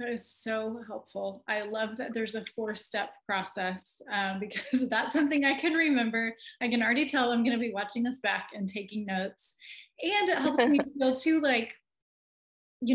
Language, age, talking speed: English, 30-49, 185 wpm